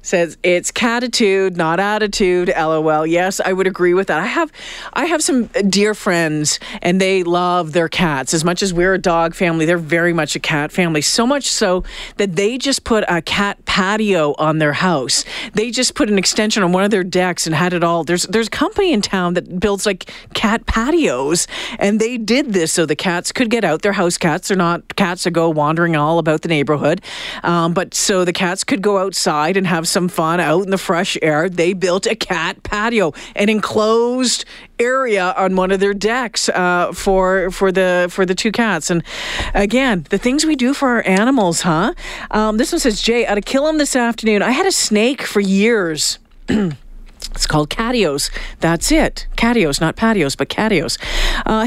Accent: American